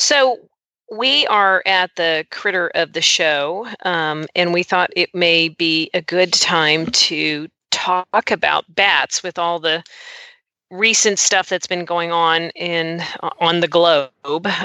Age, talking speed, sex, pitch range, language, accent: 40-59, 150 wpm, female, 155-185 Hz, English, American